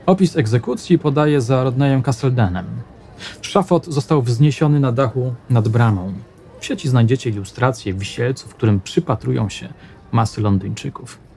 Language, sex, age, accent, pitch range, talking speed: Polish, male, 40-59, native, 105-150 Hz, 125 wpm